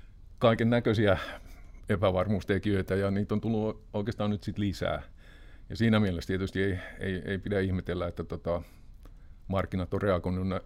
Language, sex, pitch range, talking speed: Finnish, male, 90-105 Hz, 135 wpm